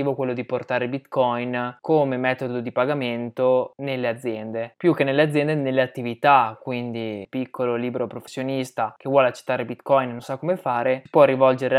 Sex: male